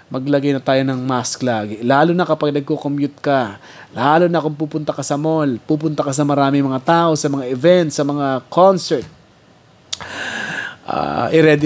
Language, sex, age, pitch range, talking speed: Filipino, male, 20-39, 130-160 Hz, 160 wpm